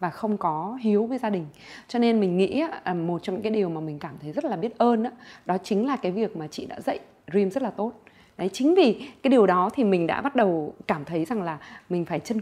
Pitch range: 185-235 Hz